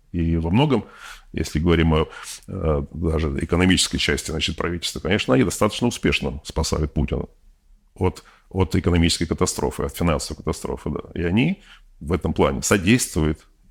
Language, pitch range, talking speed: Russian, 75-105 Hz, 140 wpm